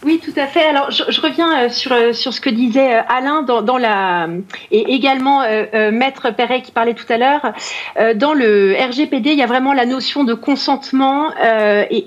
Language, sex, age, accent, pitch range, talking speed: French, female, 40-59, French, 225-280 Hz, 205 wpm